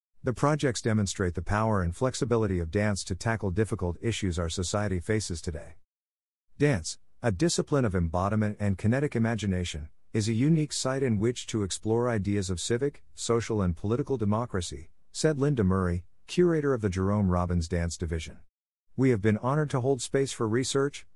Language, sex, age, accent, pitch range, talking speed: English, male, 50-69, American, 90-115 Hz, 165 wpm